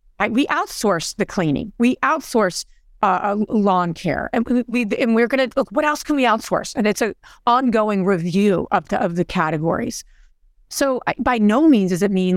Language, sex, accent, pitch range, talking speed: English, female, American, 185-250 Hz, 200 wpm